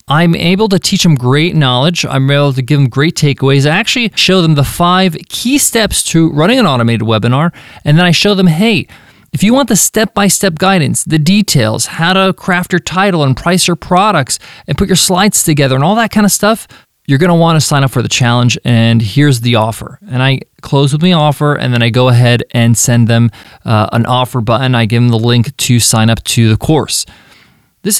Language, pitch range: English, 125-175 Hz